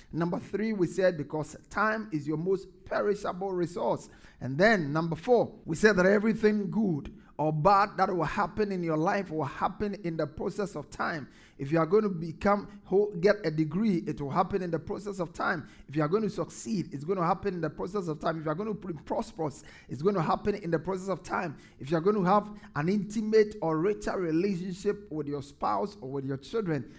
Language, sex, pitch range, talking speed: English, male, 155-205 Hz, 225 wpm